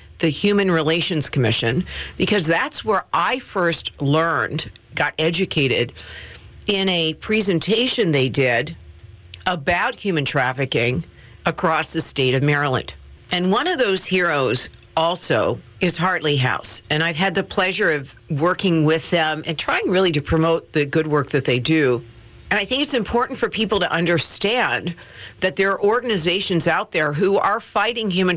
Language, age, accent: English, 50-69, American